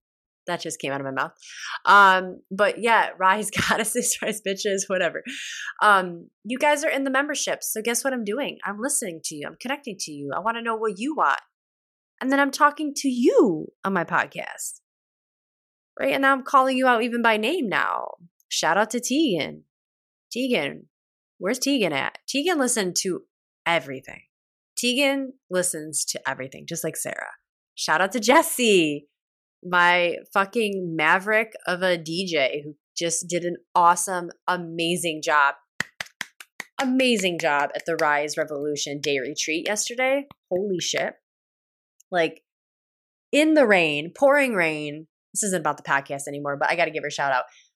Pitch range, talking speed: 160-245 Hz, 160 wpm